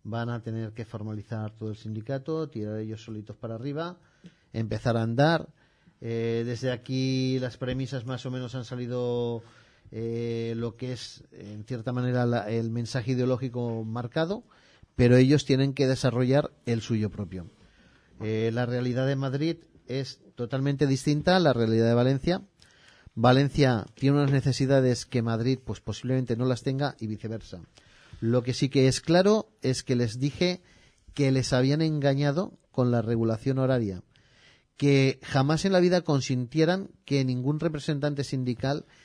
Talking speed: 150 wpm